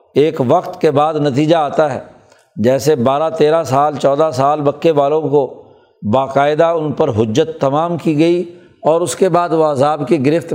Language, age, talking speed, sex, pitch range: Urdu, 60-79, 175 wpm, male, 145-170 Hz